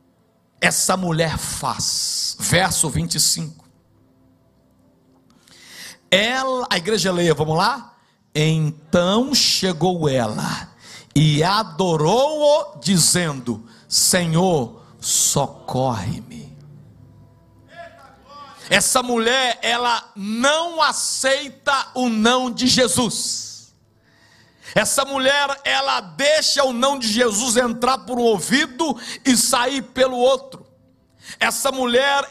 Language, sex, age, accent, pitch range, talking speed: Portuguese, male, 60-79, Brazilian, 195-270 Hz, 85 wpm